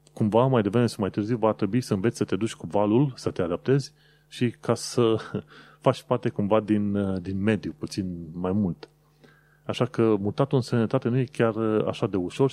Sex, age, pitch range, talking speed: male, 30-49, 95-135 Hz, 195 wpm